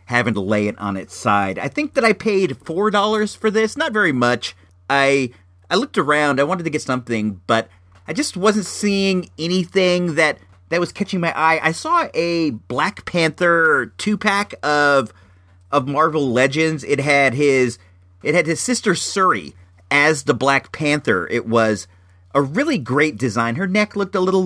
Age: 40-59